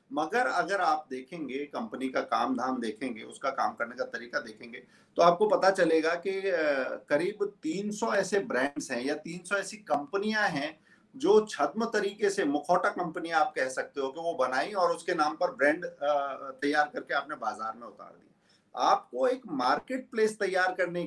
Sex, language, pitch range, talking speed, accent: male, Hindi, 145-200 Hz, 175 wpm, native